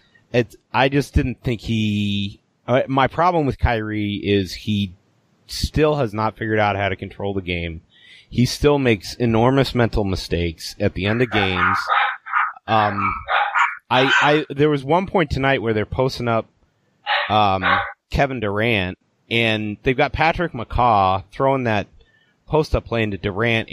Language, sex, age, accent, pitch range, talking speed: English, male, 30-49, American, 105-140 Hz, 155 wpm